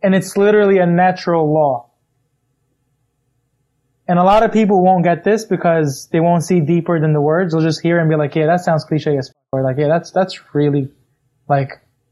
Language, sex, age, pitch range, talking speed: English, male, 20-39, 140-185 Hz, 200 wpm